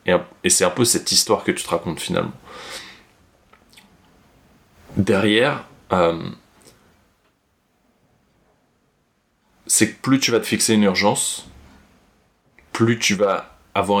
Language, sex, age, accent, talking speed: French, male, 30-49, French, 110 wpm